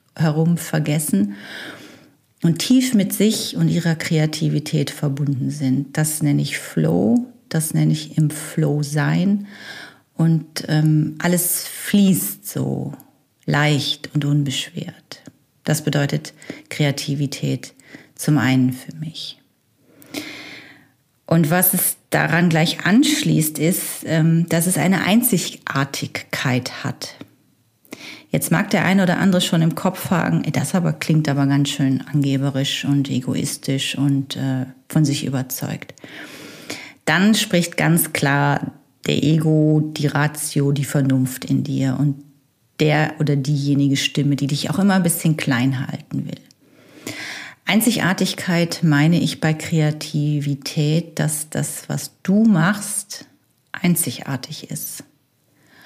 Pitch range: 140-165 Hz